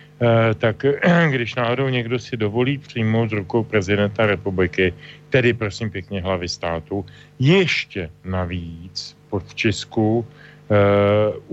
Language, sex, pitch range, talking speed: Slovak, male, 110-135 Hz, 110 wpm